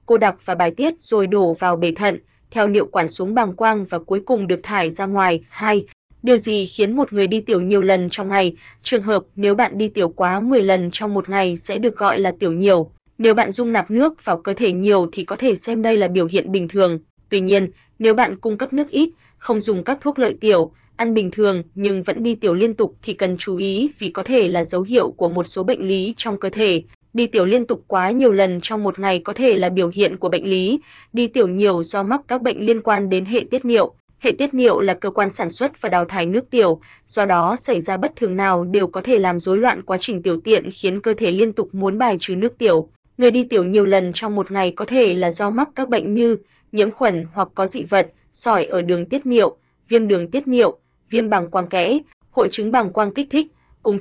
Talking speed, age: 250 wpm, 20-39